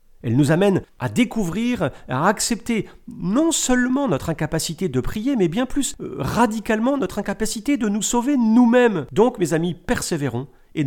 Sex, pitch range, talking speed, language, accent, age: male, 125-190 Hz, 155 wpm, French, French, 50-69